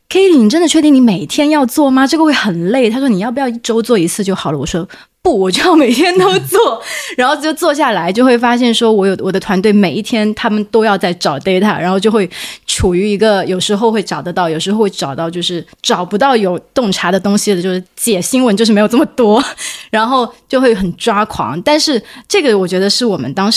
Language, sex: Chinese, female